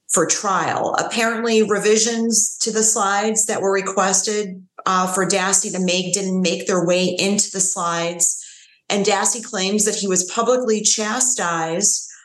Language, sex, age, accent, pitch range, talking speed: English, female, 30-49, American, 180-210 Hz, 145 wpm